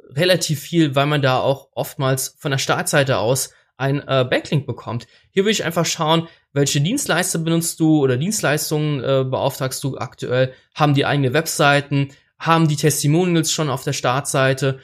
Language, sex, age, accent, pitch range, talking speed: German, male, 20-39, German, 125-150 Hz, 160 wpm